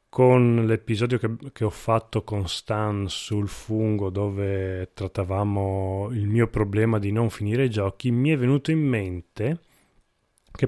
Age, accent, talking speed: 30-49, native, 140 wpm